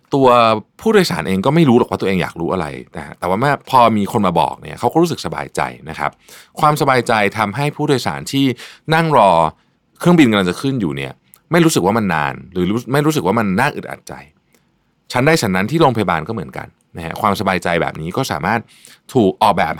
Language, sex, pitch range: Thai, male, 95-150 Hz